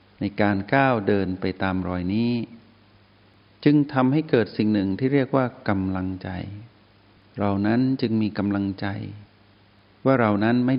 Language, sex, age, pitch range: Thai, male, 60-79, 100-120 Hz